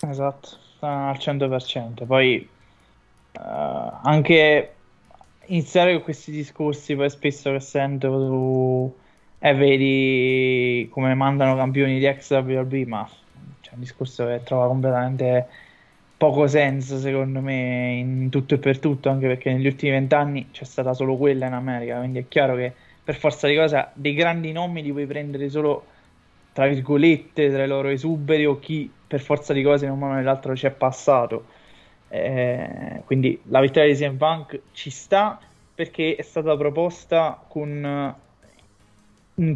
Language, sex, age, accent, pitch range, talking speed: Italian, male, 20-39, native, 130-150 Hz, 150 wpm